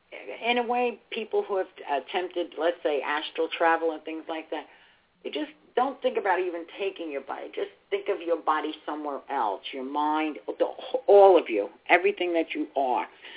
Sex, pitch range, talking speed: female, 145-230 Hz, 180 wpm